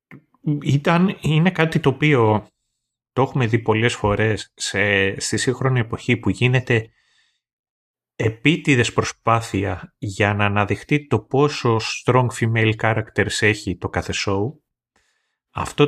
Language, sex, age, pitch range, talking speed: Greek, male, 30-49, 105-130 Hz, 115 wpm